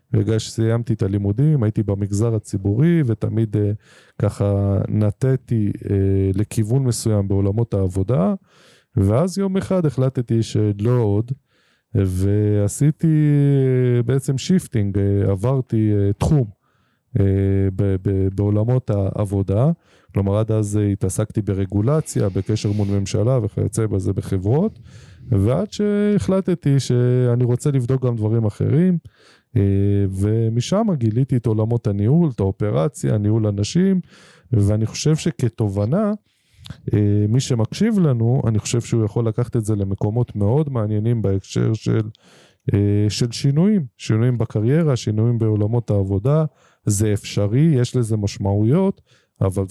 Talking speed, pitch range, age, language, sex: 105 wpm, 105-135 Hz, 20-39, Hebrew, male